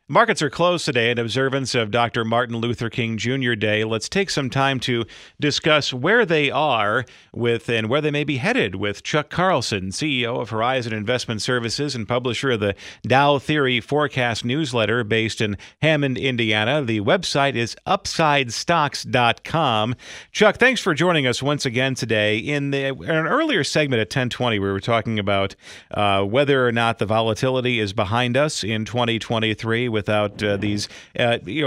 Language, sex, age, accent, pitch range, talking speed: English, male, 40-59, American, 110-145 Hz, 165 wpm